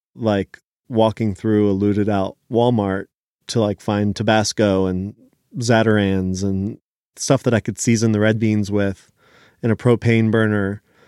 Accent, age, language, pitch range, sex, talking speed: American, 30-49, English, 100-115 Hz, male, 145 wpm